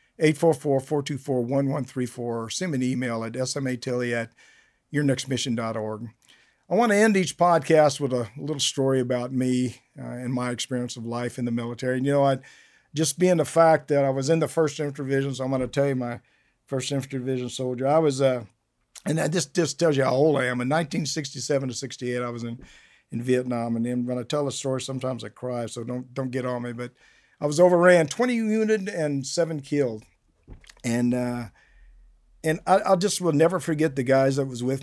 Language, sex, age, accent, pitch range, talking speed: English, male, 50-69, American, 125-160 Hz, 205 wpm